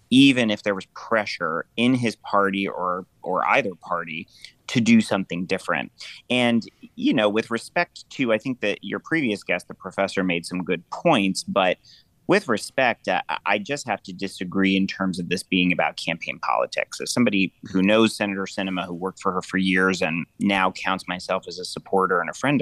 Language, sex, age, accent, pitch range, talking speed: English, male, 30-49, American, 95-100 Hz, 195 wpm